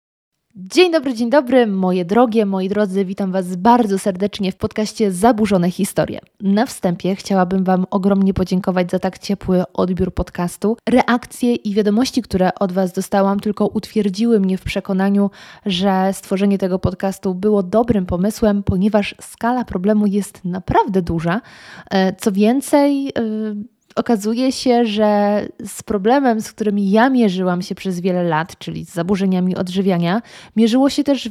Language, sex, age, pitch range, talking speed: Polish, female, 20-39, 195-230 Hz, 140 wpm